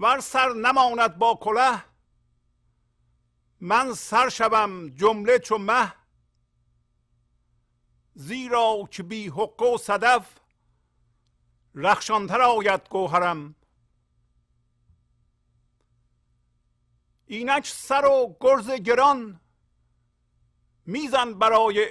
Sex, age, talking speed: male, 50-69, 75 wpm